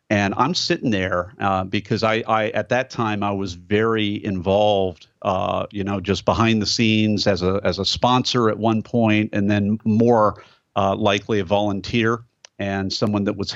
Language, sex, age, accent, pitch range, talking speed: English, male, 50-69, American, 100-115 Hz, 180 wpm